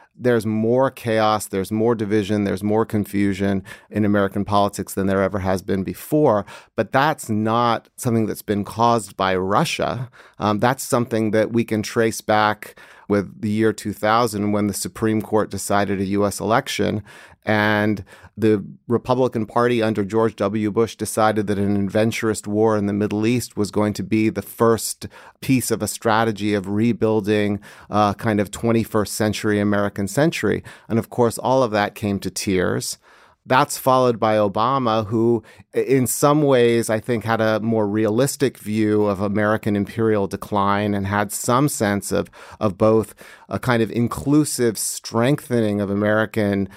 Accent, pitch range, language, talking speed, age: American, 100-115 Hz, English, 160 wpm, 30-49